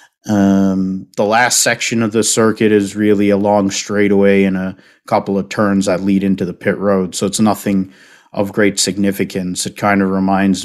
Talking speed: 185 wpm